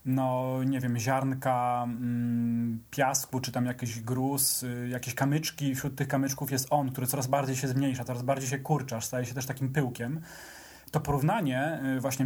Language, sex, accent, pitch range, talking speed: English, male, Polish, 125-145 Hz, 160 wpm